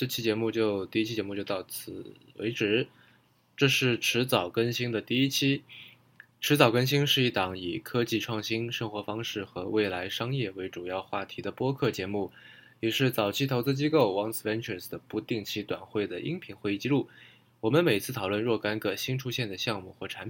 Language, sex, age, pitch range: Chinese, male, 20-39, 105-125 Hz